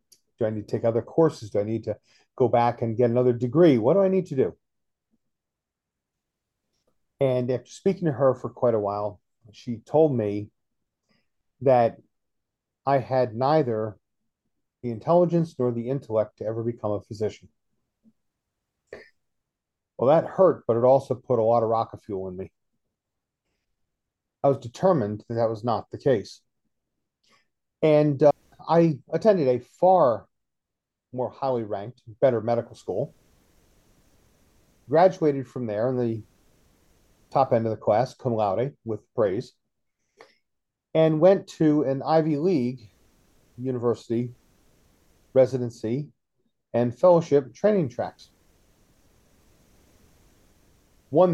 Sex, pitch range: male, 105-140 Hz